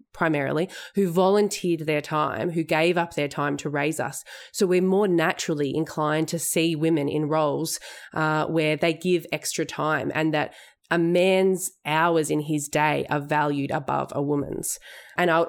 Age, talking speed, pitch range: 20-39, 170 wpm, 150-175 Hz